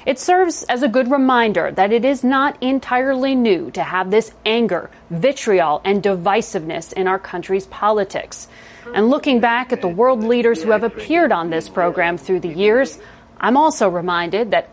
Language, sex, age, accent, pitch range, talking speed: English, female, 30-49, American, 195-260 Hz, 175 wpm